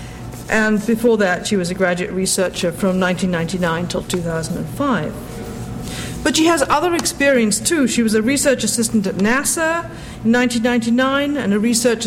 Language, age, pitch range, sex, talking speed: English, 50-69, 190-245 Hz, female, 150 wpm